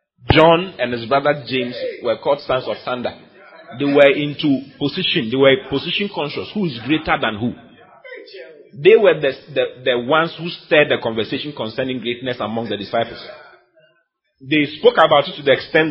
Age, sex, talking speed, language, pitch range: 30-49, male, 170 wpm, English, 125-185 Hz